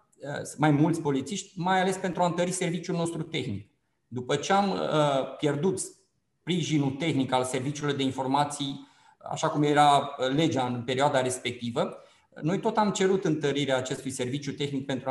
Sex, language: male, Romanian